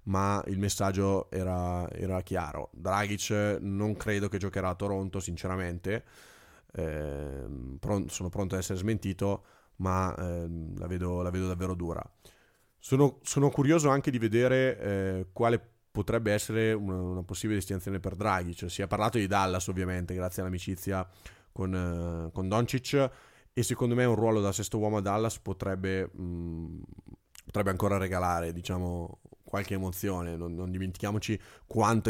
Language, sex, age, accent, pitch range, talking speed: Italian, male, 20-39, native, 90-110 Hz, 150 wpm